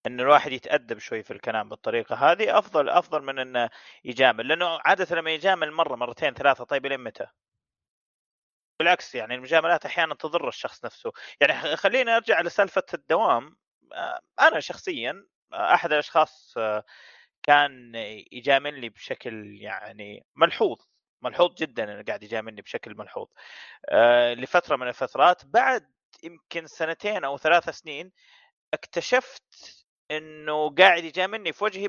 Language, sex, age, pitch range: Arabic, male, 30-49, 125-175 Hz